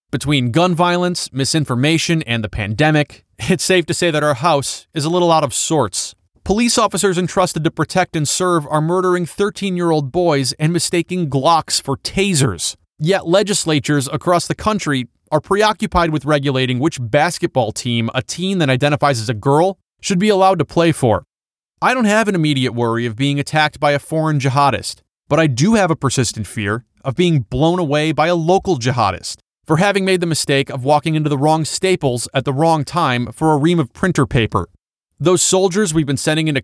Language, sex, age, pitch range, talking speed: English, male, 30-49, 130-175 Hz, 190 wpm